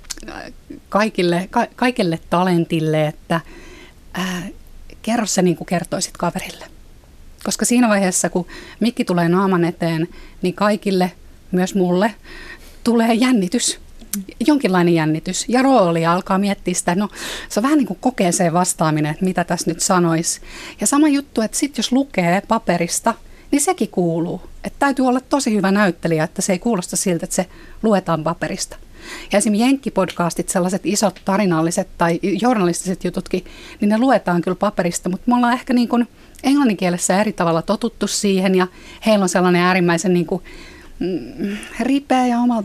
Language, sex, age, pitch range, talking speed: Finnish, female, 30-49, 170-220 Hz, 150 wpm